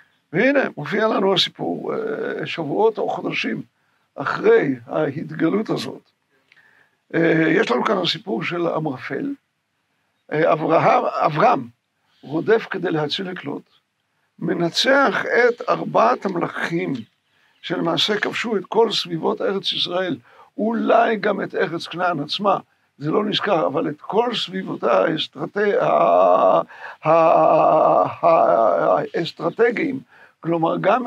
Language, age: Hebrew, 60-79